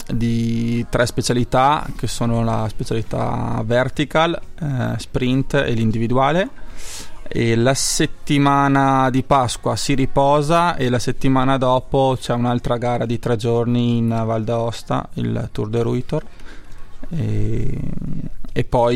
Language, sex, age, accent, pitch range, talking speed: Italian, male, 20-39, native, 115-130 Hz, 120 wpm